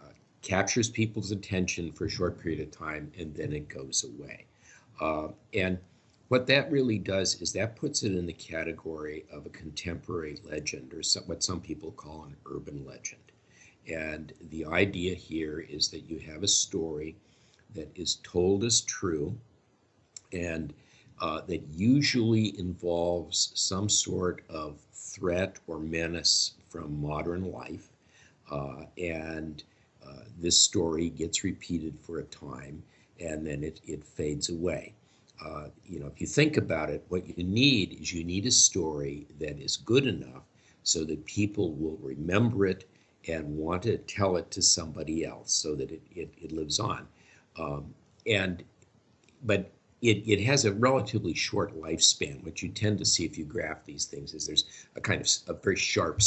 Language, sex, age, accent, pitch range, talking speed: English, male, 50-69, American, 80-110 Hz, 165 wpm